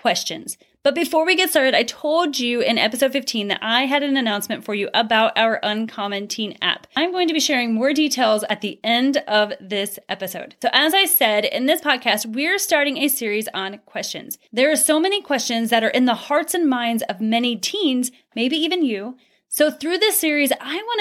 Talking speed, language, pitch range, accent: 210 wpm, English, 230-300 Hz, American